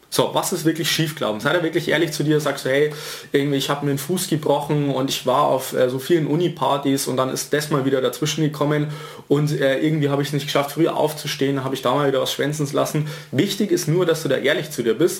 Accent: German